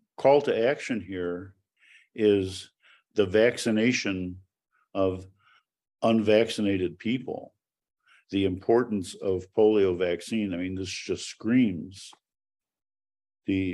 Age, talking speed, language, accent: 50-69, 90 wpm, English, American